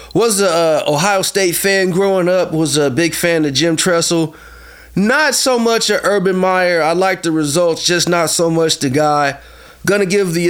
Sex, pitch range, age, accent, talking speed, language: male, 160-195 Hz, 30-49, American, 200 wpm, English